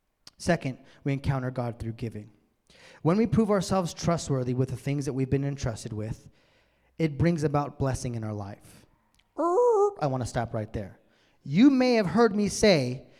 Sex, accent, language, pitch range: male, American, English, 135-210 Hz